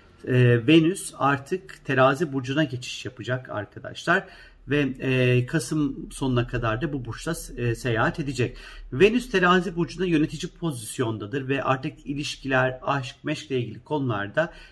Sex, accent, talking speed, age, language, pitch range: male, native, 130 wpm, 50-69, Turkish, 125-165 Hz